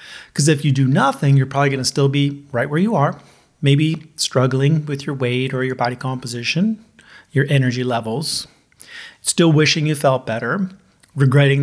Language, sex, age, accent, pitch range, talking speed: English, male, 30-49, American, 130-150 Hz, 170 wpm